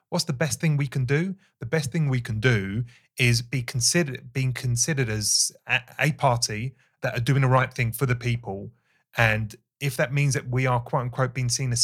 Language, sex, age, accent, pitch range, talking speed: English, male, 30-49, British, 115-135 Hz, 220 wpm